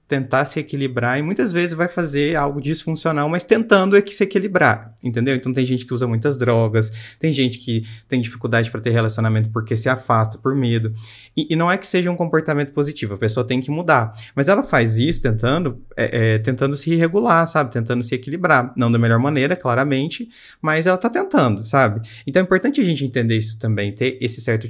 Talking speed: 210 wpm